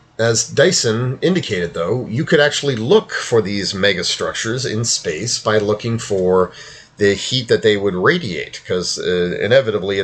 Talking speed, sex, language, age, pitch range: 150 wpm, male, English, 30-49, 95-125 Hz